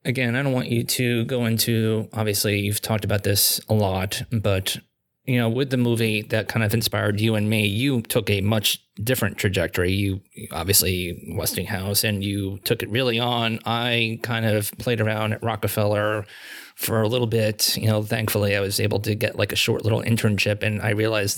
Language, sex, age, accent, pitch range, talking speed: English, male, 20-39, American, 105-120 Hz, 195 wpm